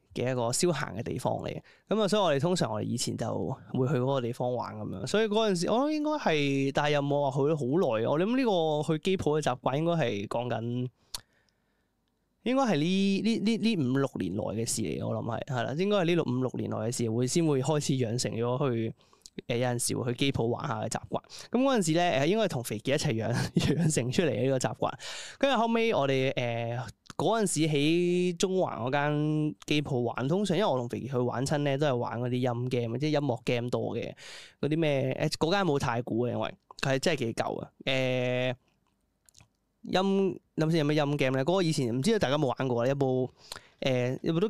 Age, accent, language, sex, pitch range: 20-39, native, Chinese, male, 120-160 Hz